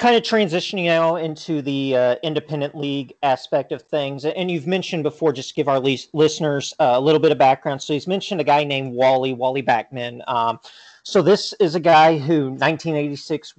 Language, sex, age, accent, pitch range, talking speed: English, male, 40-59, American, 130-155 Hz, 195 wpm